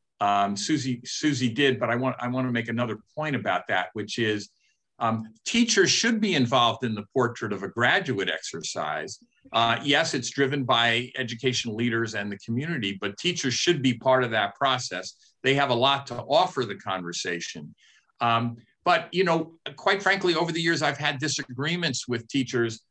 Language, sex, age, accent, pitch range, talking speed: English, male, 50-69, American, 110-140 Hz, 180 wpm